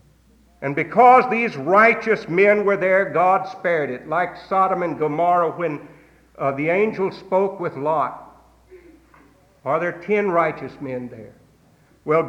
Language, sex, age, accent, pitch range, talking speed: English, male, 60-79, American, 130-185 Hz, 135 wpm